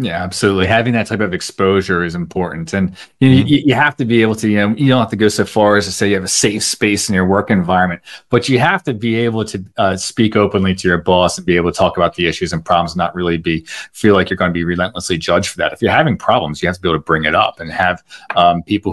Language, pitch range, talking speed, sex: English, 90-115 Hz, 295 wpm, male